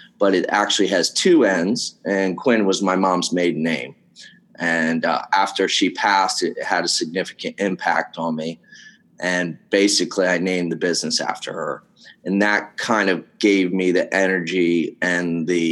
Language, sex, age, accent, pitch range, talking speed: English, male, 30-49, American, 90-110 Hz, 165 wpm